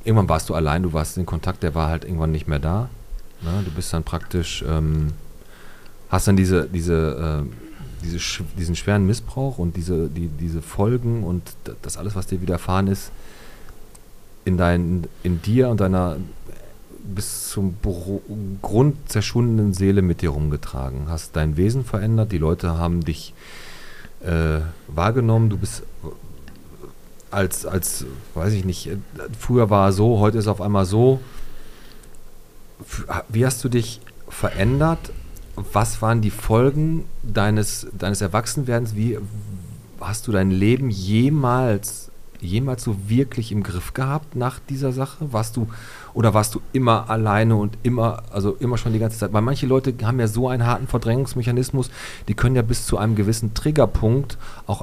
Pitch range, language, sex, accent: 95-115 Hz, German, male, German